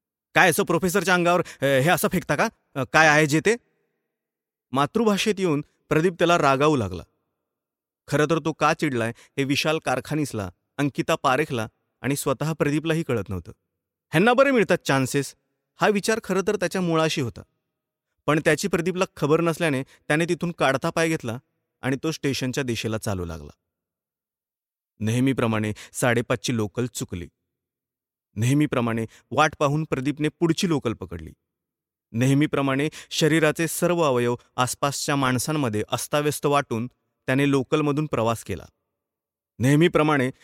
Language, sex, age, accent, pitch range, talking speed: Marathi, male, 30-49, native, 115-160 Hz, 105 wpm